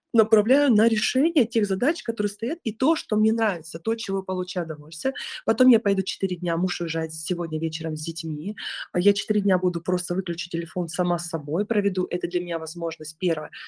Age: 20-39